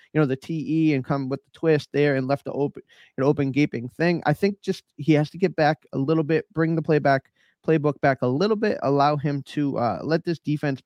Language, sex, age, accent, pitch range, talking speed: English, male, 20-39, American, 135-150 Hz, 250 wpm